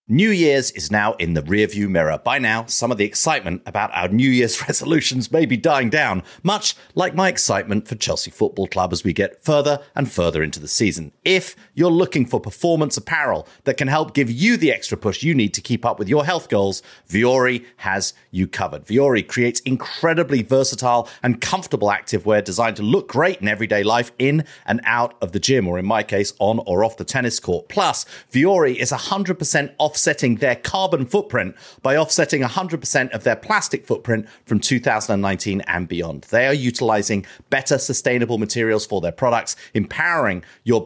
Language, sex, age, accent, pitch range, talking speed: English, male, 40-59, British, 105-160 Hz, 190 wpm